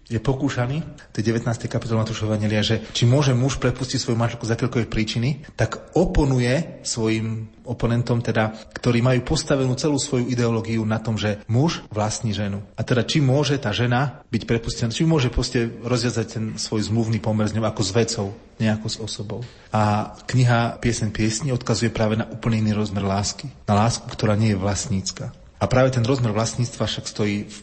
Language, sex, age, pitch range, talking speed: Slovak, male, 30-49, 105-125 Hz, 175 wpm